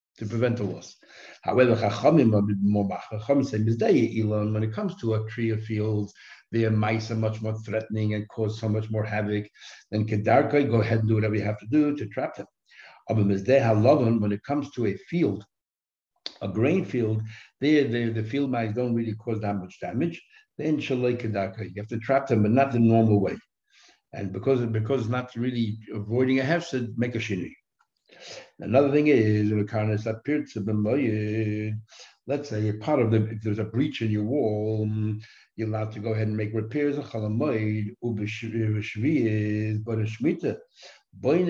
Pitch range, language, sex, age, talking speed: 105-125 Hz, English, male, 60-79, 155 wpm